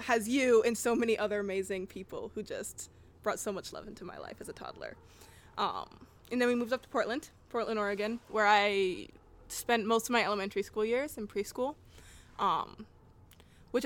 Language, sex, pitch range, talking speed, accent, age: English, female, 200-240 Hz, 185 wpm, American, 20-39